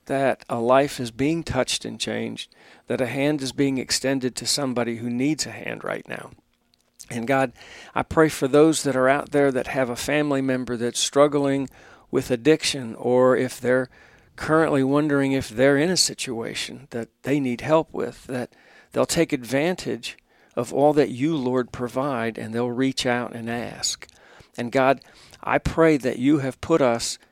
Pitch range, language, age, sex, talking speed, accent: 120-145 Hz, English, 50-69, male, 180 wpm, American